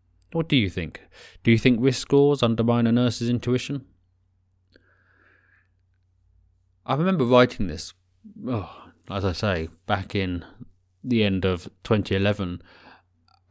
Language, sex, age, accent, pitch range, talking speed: English, male, 20-39, British, 90-105 Hz, 115 wpm